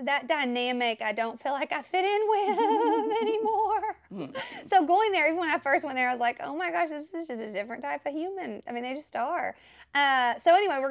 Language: English